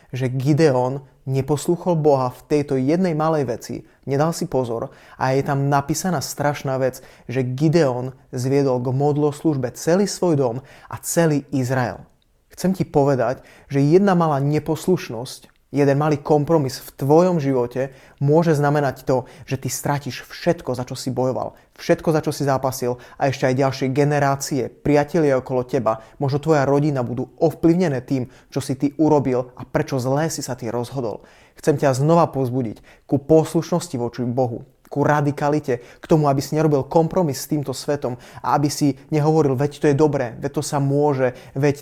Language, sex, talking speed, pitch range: Slovak, male, 165 wpm, 130-150 Hz